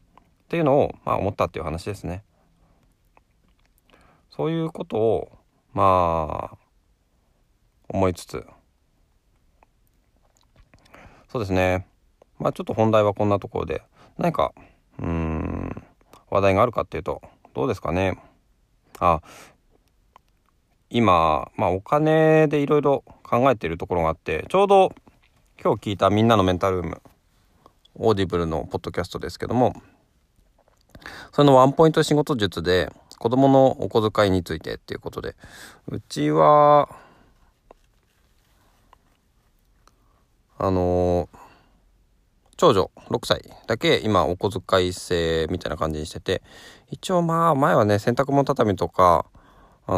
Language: Japanese